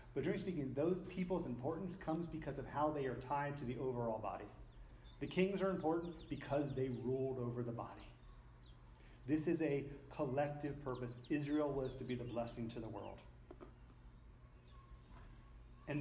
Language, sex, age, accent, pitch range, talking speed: English, male, 30-49, American, 120-155 Hz, 155 wpm